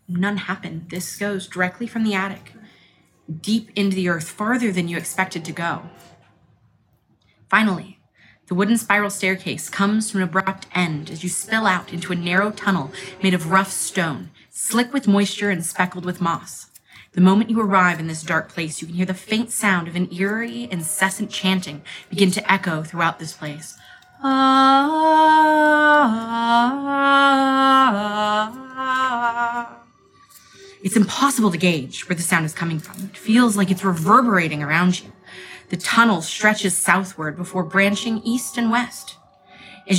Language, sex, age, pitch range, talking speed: English, female, 30-49, 180-215 Hz, 155 wpm